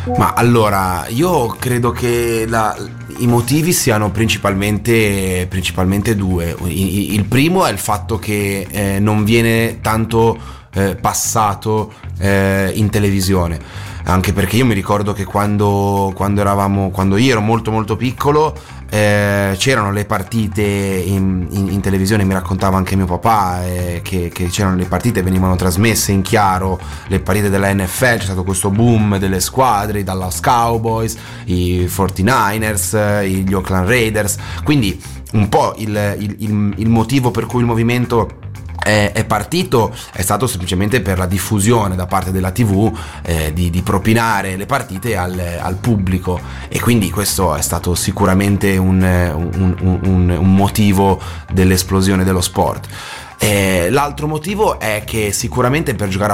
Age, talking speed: 30-49, 145 wpm